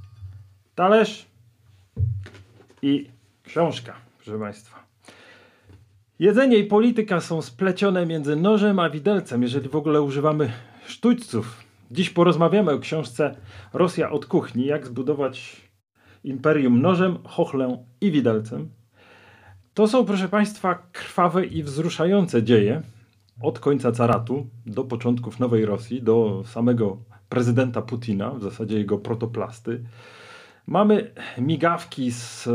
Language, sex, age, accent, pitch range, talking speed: Polish, male, 40-59, native, 115-160 Hz, 105 wpm